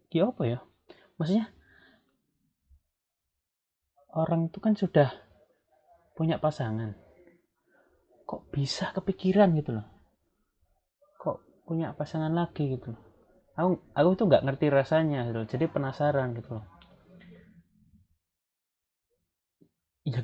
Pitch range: 125-165 Hz